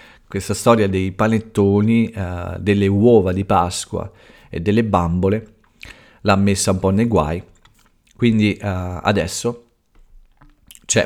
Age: 50-69